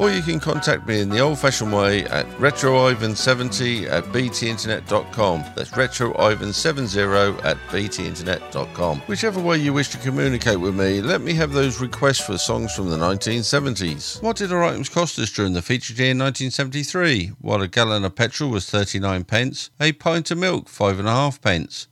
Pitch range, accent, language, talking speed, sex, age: 105-150 Hz, British, English, 170 wpm, male, 50-69